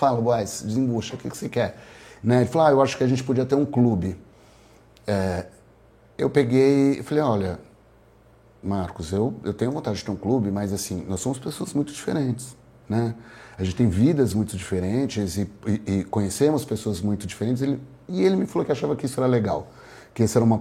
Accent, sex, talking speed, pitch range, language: Brazilian, male, 205 wpm, 105-130 Hz, Portuguese